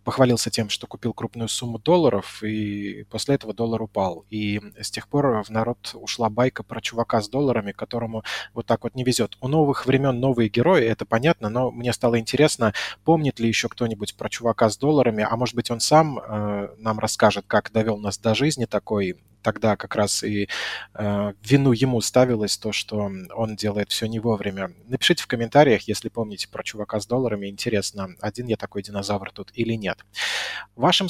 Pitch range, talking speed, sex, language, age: 105-125 Hz, 185 wpm, male, Russian, 20-39